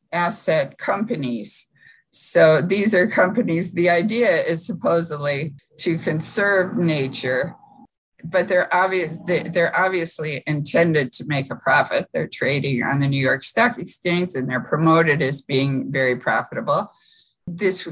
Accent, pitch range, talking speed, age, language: American, 145-190 Hz, 125 wpm, 60-79, English